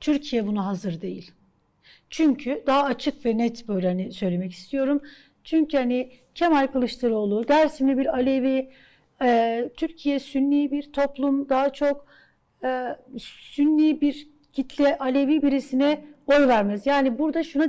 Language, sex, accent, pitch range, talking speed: Turkish, female, native, 230-285 Hz, 120 wpm